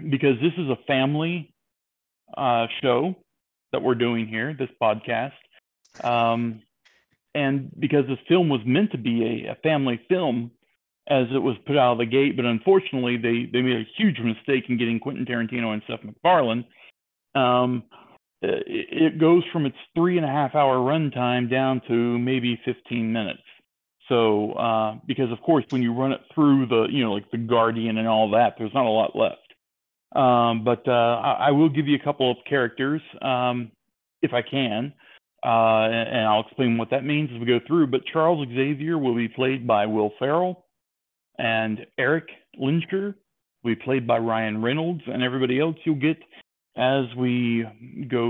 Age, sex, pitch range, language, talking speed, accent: 40-59, male, 115-145 Hz, English, 180 wpm, American